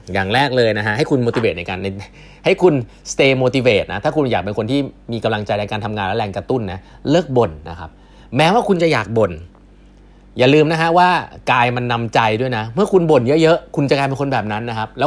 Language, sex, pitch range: Thai, male, 105-145 Hz